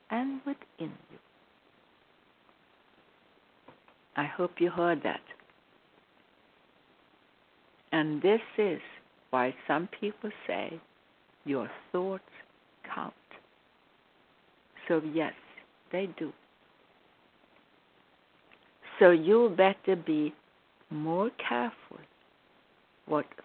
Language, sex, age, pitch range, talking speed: English, female, 60-79, 170-220 Hz, 75 wpm